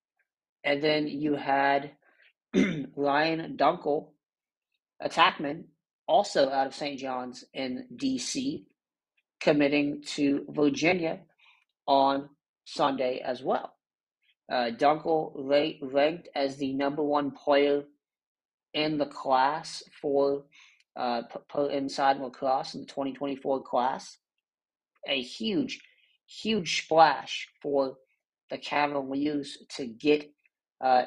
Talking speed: 105 wpm